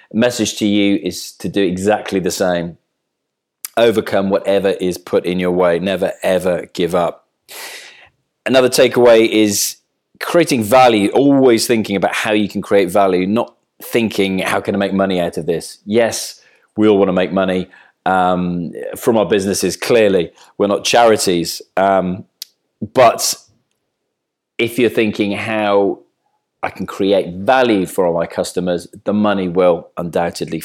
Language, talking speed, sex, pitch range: English, 150 wpm, male, 90-115 Hz